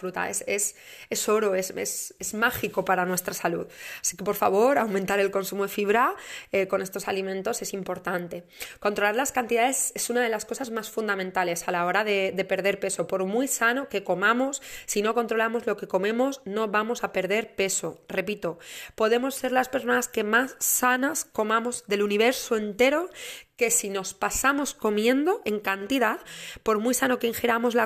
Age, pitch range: 20-39, 190-230 Hz